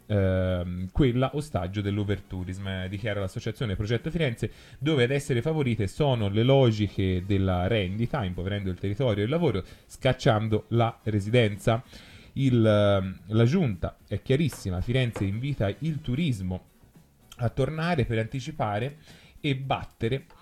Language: Italian